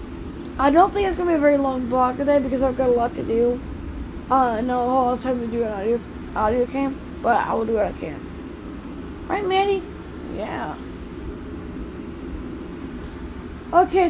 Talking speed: 185 wpm